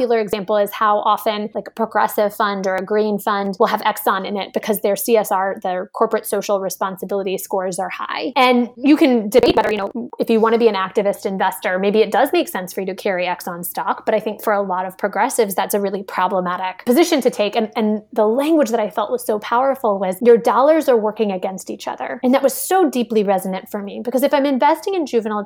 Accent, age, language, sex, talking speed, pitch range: American, 20-39, English, female, 235 wpm, 200-245 Hz